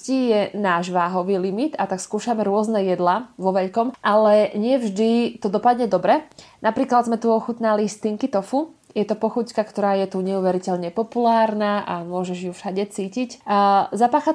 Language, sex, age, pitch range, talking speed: Slovak, female, 20-39, 195-235 Hz, 150 wpm